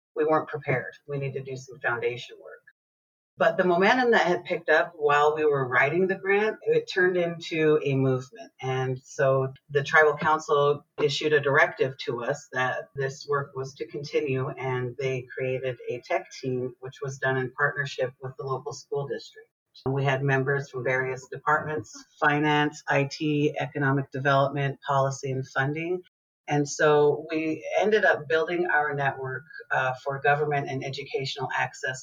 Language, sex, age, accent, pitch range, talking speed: English, female, 40-59, American, 130-150 Hz, 165 wpm